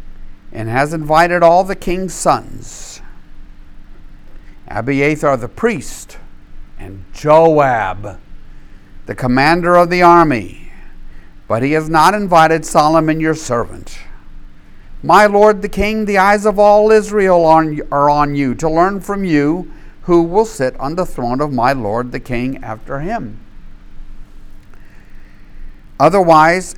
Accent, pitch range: American, 120-165 Hz